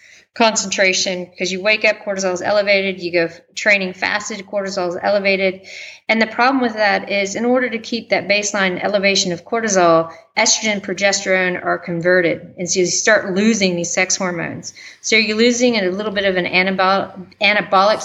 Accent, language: American, English